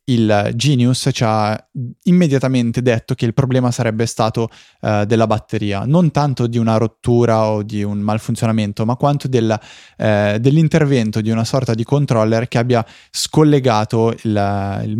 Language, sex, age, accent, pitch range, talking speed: Italian, male, 20-39, native, 110-130 Hz, 140 wpm